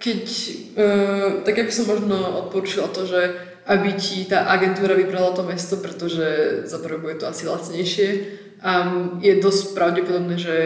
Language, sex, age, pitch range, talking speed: Slovak, female, 20-39, 170-185 Hz, 150 wpm